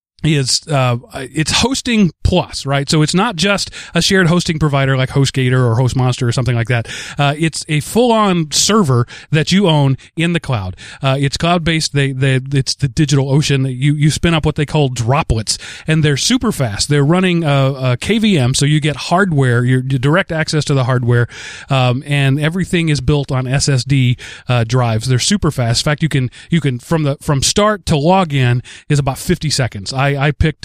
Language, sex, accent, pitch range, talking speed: English, male, American, 130-155 Hz, 200 wpm